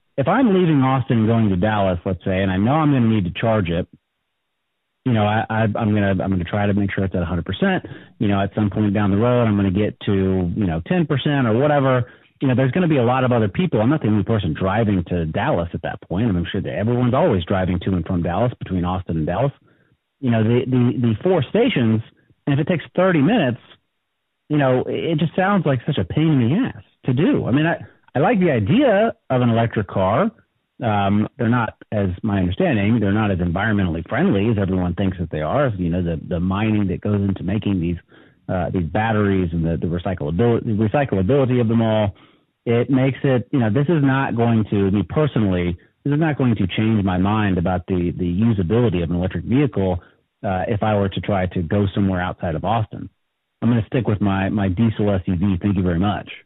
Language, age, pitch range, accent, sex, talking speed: English, 40-59, 95-125 Hz, American, male, 235 wpm